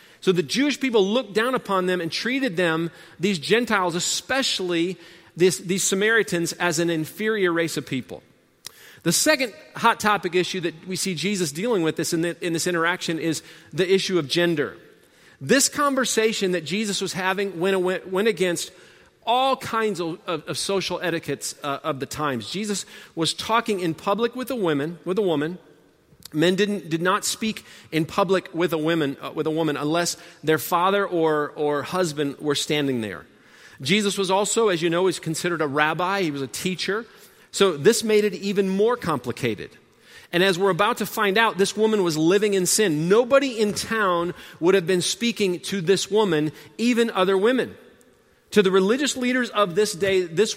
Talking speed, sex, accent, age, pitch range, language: 185 wpm, male, American, 40-59, 165-205 Hz, English